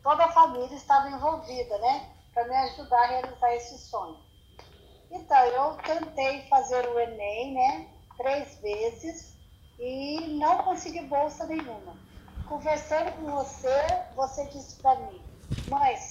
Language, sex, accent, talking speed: Portuguese, female, Brazilian, 130 wpm